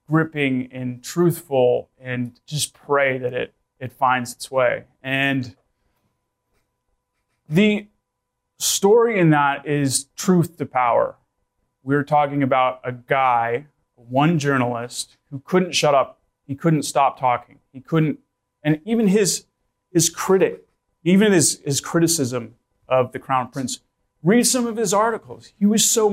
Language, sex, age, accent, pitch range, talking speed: English, male, 30-49, American, 125-155 Hz, 135 wpm